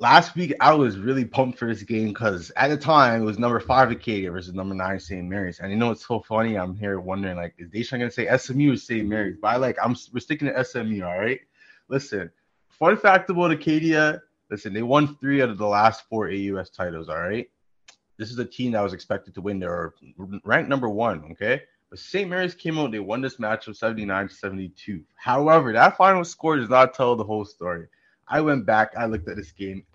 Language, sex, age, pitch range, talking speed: English, male, 20-39, 100-135 Hz, 230 wpm